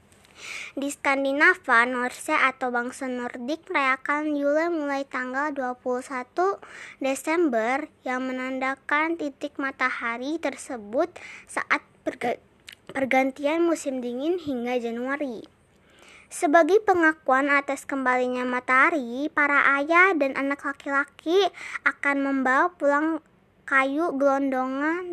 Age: 20-39